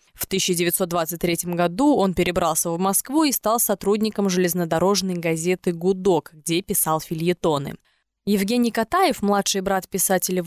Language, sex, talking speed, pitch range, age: Russian, female, 120 wpm, 185-230 Hz, 20-39